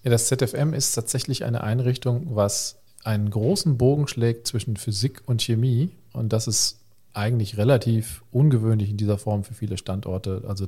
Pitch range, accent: 110-130 Hz, German